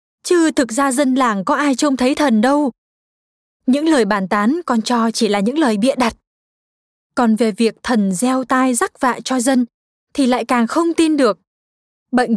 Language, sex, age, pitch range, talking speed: Vietnamese, female, 20-39, 230-290 Hz, 195 wpm